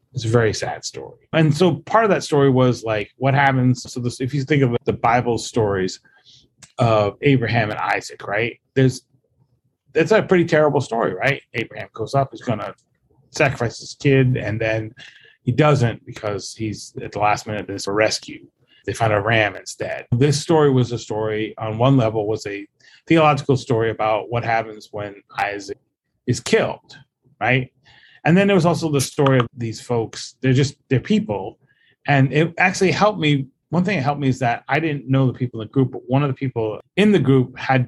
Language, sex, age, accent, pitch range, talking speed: English, male, 30-49, American, 115-140 Hz, 200 wpm